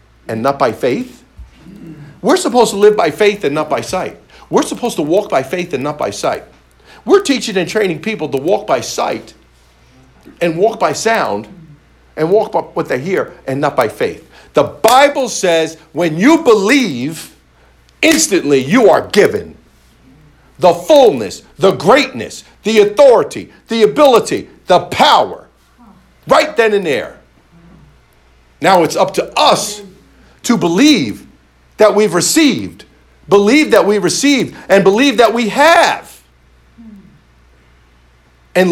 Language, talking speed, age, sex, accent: English, 140 wpm, 50-69, male, American